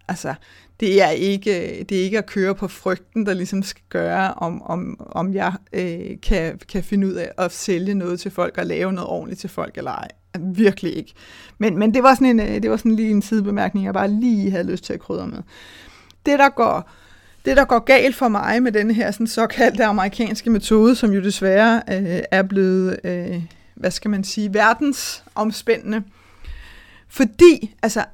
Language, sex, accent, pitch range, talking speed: Danish, female, native, 190-240 Hz, 195 wpm